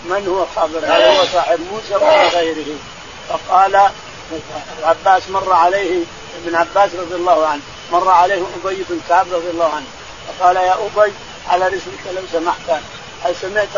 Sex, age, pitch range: male, 50-69, 170-215 Hz